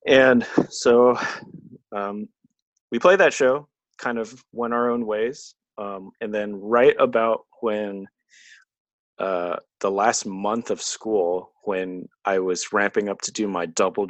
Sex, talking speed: male, 145 wpm